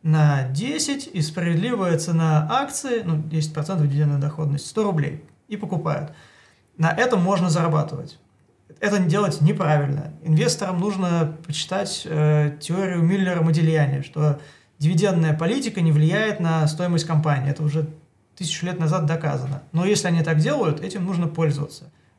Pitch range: 150-180 Hz